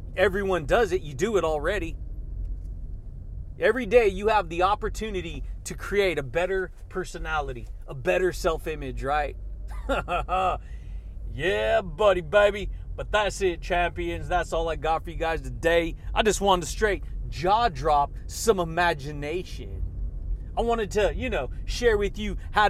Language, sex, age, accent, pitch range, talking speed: English, male, 30-49, American, 145-205 Hz, 145 wpm